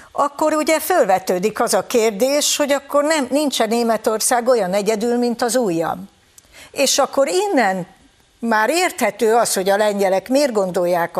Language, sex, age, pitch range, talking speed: Hungarian, female, 60-79, 185-260 Hz, 145 wpm